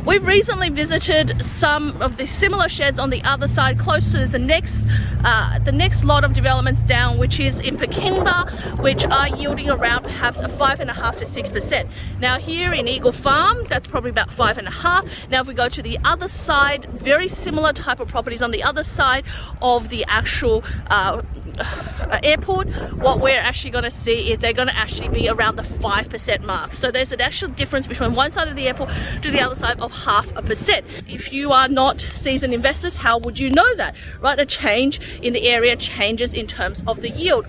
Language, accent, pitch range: English, Australian, 235-310 Hz